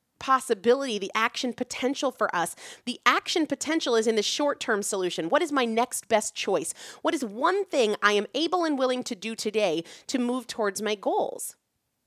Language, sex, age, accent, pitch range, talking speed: English, female, 30-49, American, 210-290 Hz, 185 wpm